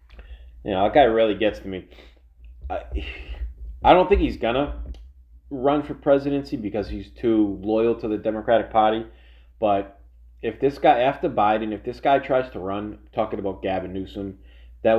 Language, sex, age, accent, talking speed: English, male, 30-49, American, 170 wpm